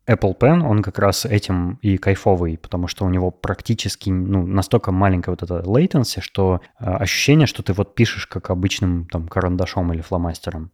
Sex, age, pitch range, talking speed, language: male, 20-39, 90-115 Hz, 180 wpm, Russian